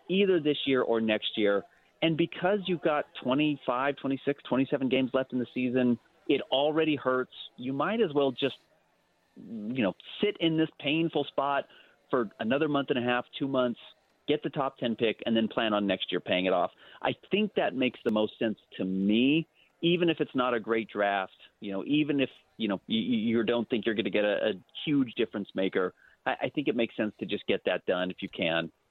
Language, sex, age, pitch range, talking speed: English, male, 30-49, 110-150 Hz, 215 wpm